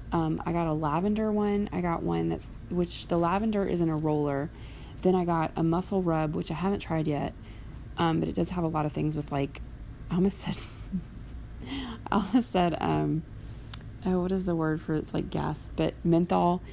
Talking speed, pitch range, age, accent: 210 wpm, 125-175 Hz, 20-39, American